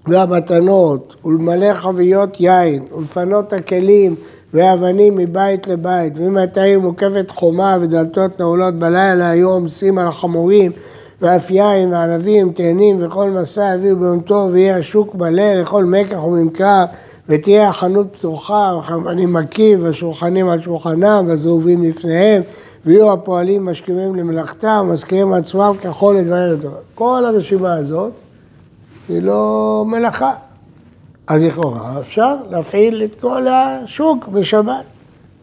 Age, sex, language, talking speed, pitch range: 60-79, male, Hebrew, 115 wpm, 160-205 Hz